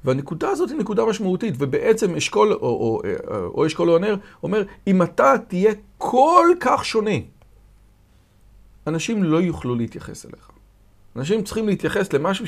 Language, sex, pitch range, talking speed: Hebrew, male, 110-170 Hz, 140 wpm